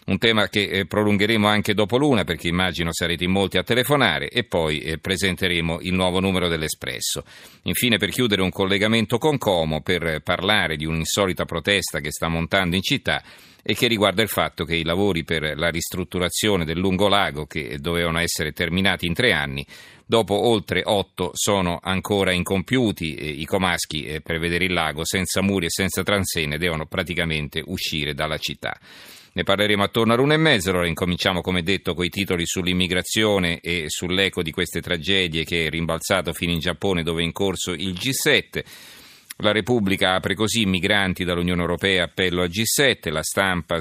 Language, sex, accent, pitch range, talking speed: Italian, male, native, 85-100 Hz, 175 wpm